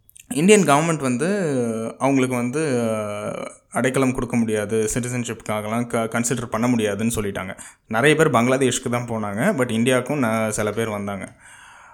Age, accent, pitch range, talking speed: 20-39, native, 110-135 Hz, 125 wpm